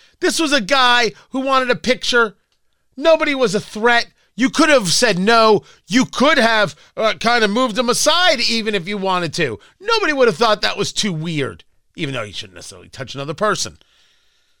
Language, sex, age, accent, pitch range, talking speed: English, male, 40-59, American, 170-265 Hz, 195 wpm